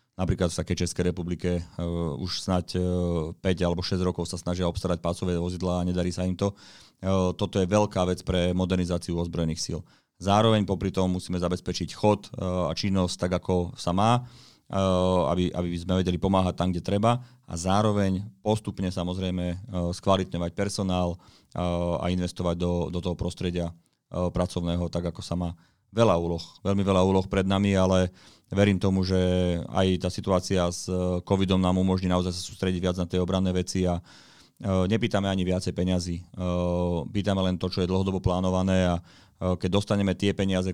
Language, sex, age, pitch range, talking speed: Slovak, male, 30-49, 90-95 Hz, 170 wpm